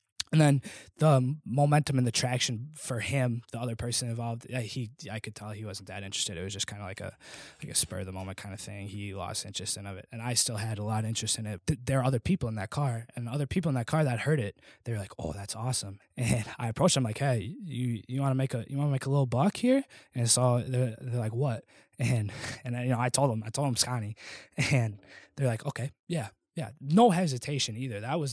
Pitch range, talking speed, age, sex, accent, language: 110-135 Hz, 265 wpm, 20-39, male, American, English